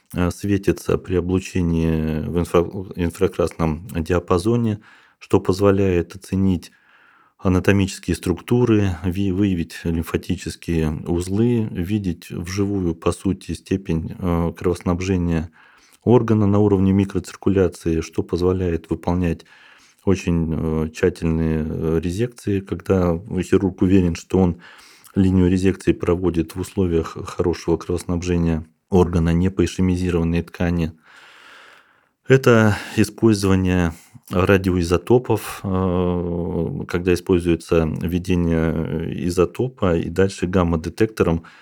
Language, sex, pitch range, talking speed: Russian, male, 85-95 Hz, 80 wpm